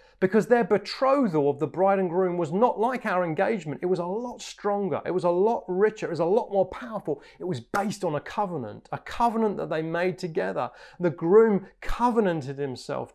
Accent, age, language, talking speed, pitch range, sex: British, 30-49, English, 205 wpm, 150-195 Hz, male